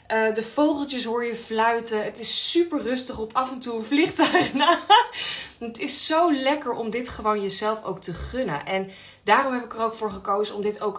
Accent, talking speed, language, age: Dutch, 200 wpm, Dutch, 20-39